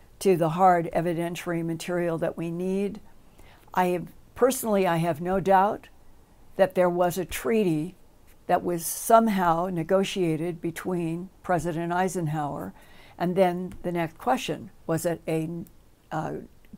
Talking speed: 130 wpm